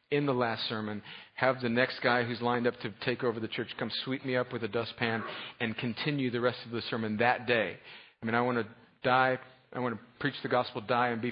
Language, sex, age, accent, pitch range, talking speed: English, male, 40-59, American, 120-155 Hz, 250 wpm